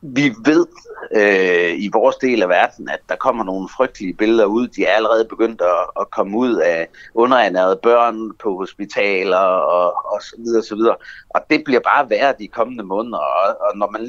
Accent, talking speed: native, 190 wpm